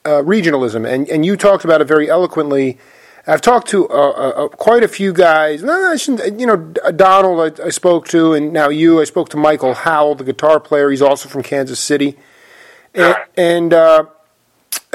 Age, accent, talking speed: 30-49, American, 175 wpm